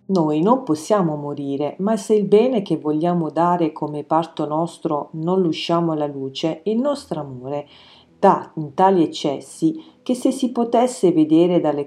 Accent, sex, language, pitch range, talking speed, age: native, female, Italian, 150-205 Hz, 155 wpm, 40-59